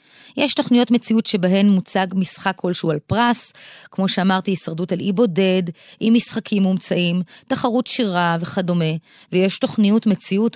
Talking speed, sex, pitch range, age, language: 135 wpm, female, 180-225 Hz, 20-39, Hebrew